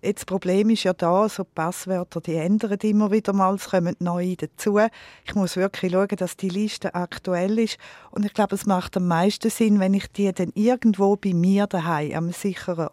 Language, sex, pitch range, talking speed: German, female, 175-215 Hz, 205 wpm